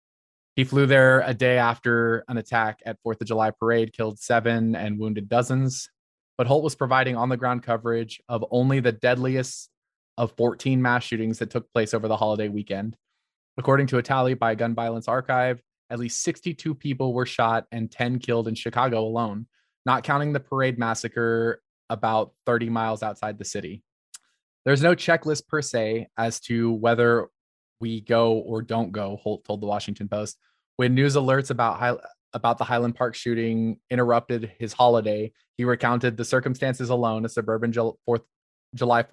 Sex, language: male, English